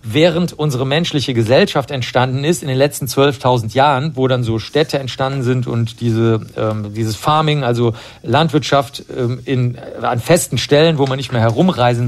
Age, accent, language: 50-69, German, German